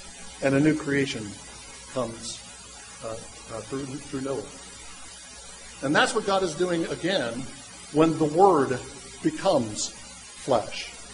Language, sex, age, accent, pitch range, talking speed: English, male, 50-69, American, 160-210 Hz, 120 wpm